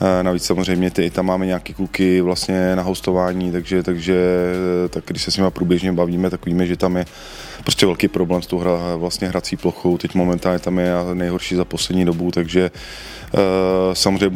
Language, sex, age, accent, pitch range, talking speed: Czech, male, 20-39, native, 90-95 Hz, 185 wpm